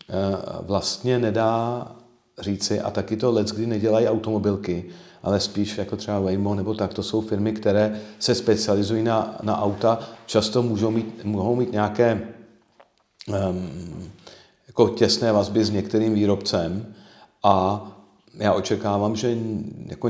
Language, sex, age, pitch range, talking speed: Czech, male, 50-69, 95-110 Hz, 130 wpm